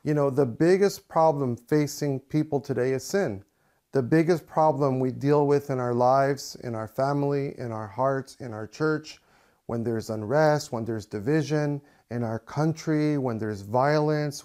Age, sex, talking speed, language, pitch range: 40-59, male, 165 wpm, English, 135-175 Hz